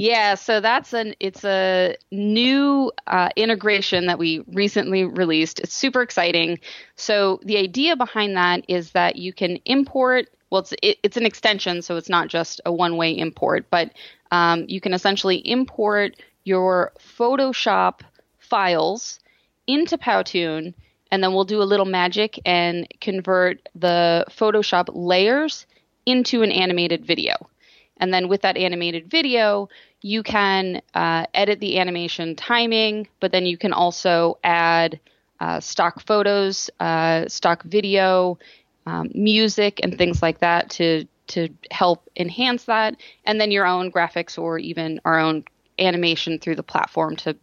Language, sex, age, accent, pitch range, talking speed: English, female, 20-39, American, 170-215 Hz, 150 wpm